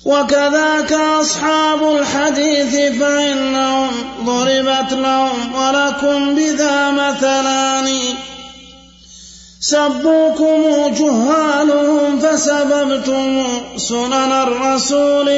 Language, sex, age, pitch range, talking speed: Arabic, male, 30-49, 265-290 Hz, 55 wpm